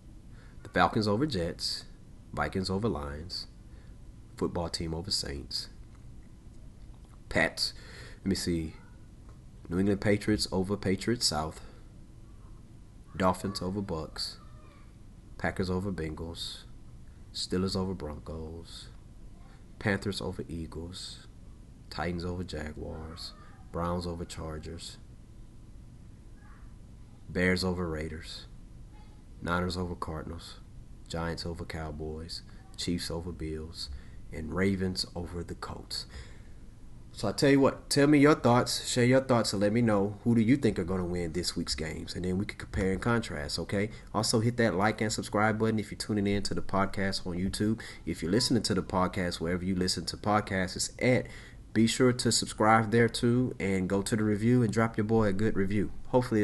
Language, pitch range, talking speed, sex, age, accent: English, 85-110 Hz, 145 wpm, male, 30-49, American